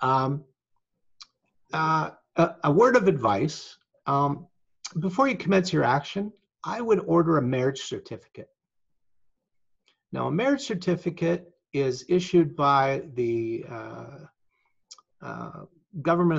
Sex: male